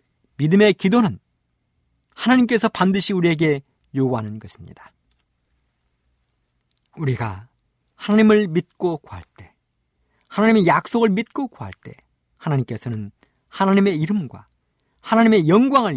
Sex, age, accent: male, 50-69, native